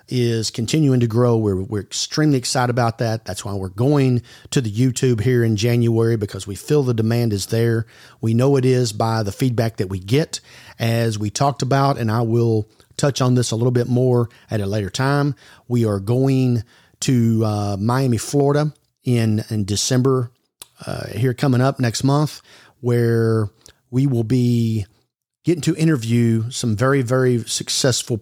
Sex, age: male, 40-59